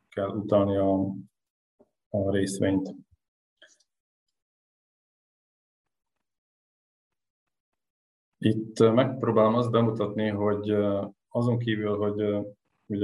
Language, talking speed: Hungarian, 65 wpm